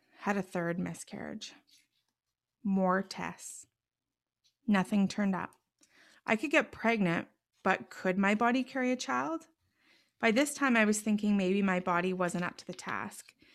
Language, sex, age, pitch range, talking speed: English, female, 20-39, 180-220 Hz, 150 wpm